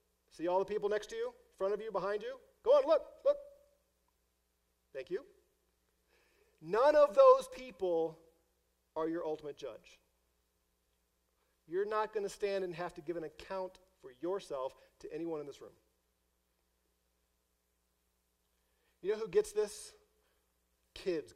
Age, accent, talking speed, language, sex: 40-59, American, 145 wpm, English, male